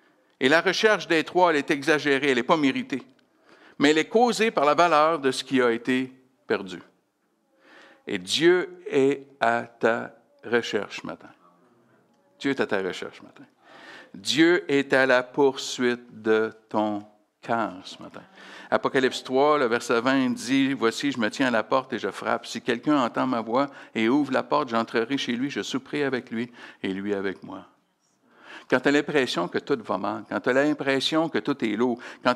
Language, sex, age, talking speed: French, male, 60-79, 195 wpm